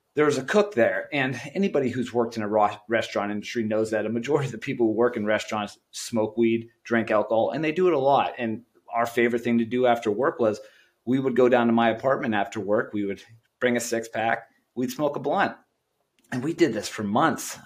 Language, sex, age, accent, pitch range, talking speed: English, male, 30-49, American, 115-135 Hz, 230 wpm